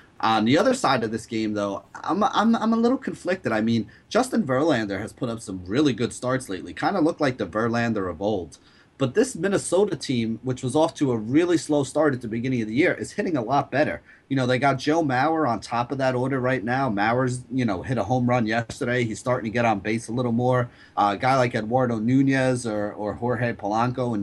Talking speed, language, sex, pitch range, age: 245 wpm, English, male, 110-135 Hz, 30-49